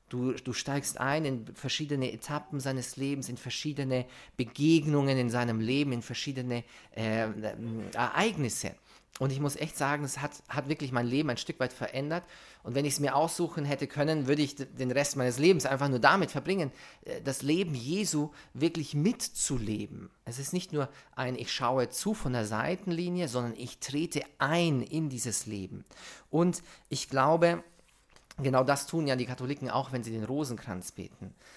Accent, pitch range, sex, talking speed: German, 120-155 Hz, male, 175 wpm